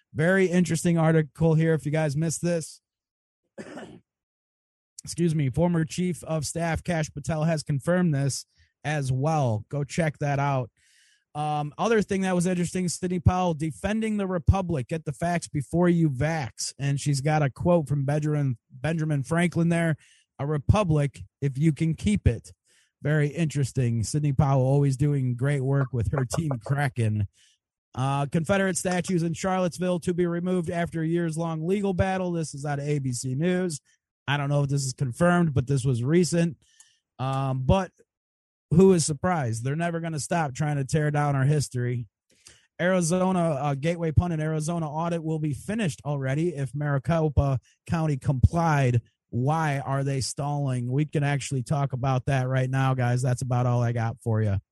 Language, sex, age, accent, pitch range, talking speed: English, male, 30-49, American, 135-170 Hz, 170 wpm